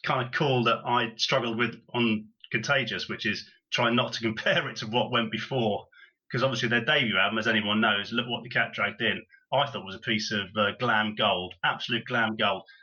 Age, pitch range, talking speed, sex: 30-49, 115-155 Hz, 220 wpm, male